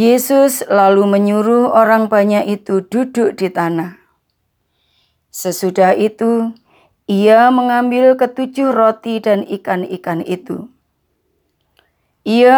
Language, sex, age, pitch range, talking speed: Indonesian, female, 20-39, 180-235 Hz, 90 wpm